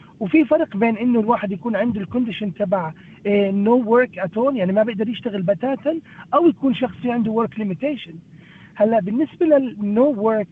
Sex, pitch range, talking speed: male, 195-260 Hz, 160 wpm